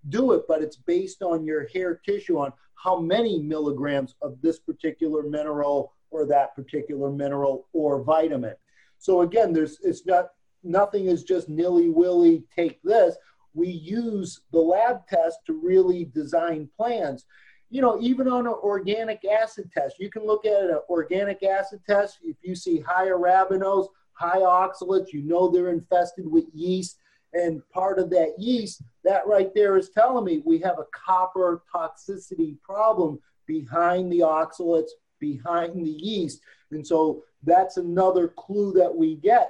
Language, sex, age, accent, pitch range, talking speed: English, male, 40-59, American, 160-200 Hz, 160 wpm